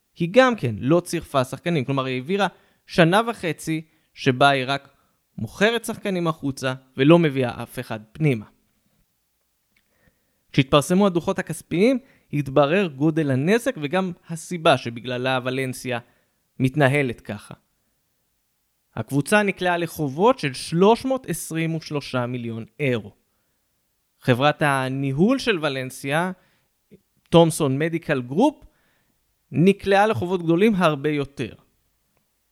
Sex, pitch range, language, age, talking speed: male, 135-185 Hz, Hebrew, 20-39, 95 wpm